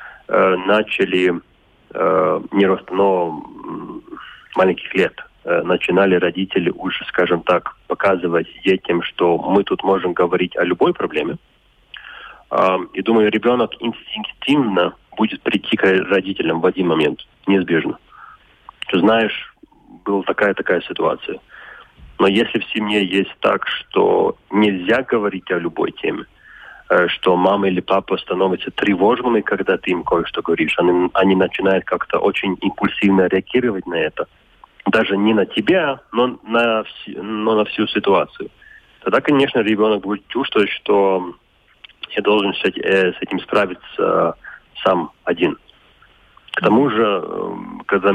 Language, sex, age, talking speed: Russian, male, 30-49, 120 wpm